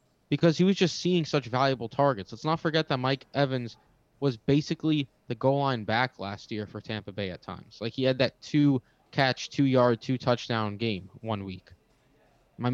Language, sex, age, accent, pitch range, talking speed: English, male, 20-39, American, 115-160 Hz, 180 wpm